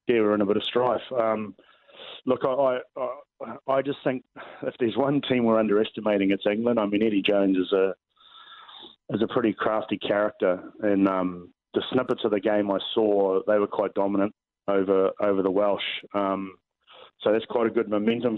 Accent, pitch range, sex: Australian, 100-115 Hz, male